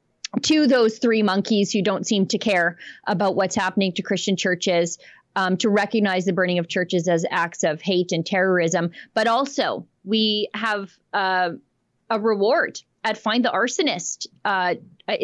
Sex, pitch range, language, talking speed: female, 175-220 Hz, English, 160 wpm